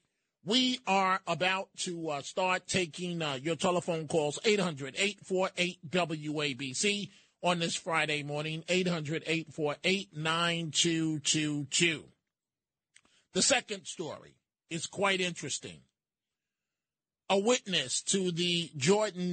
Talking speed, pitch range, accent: 85 wpm, 155-190 Hz, American